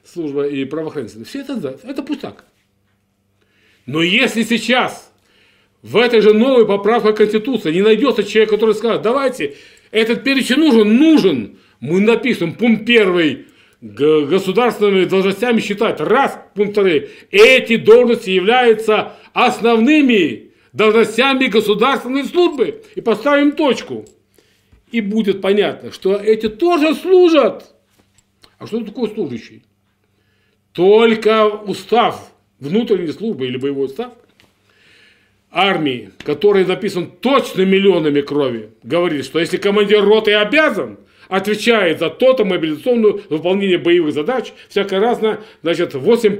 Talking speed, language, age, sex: 115 wpm, Russian, 40-59, male